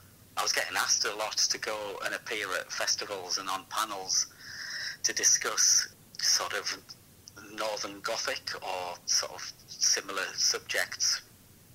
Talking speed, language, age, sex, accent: 135 wpm, English, 40-59, male, British